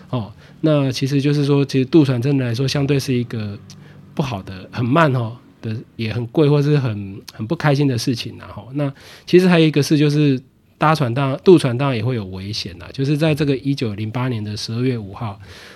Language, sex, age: Chinese, male, 20-39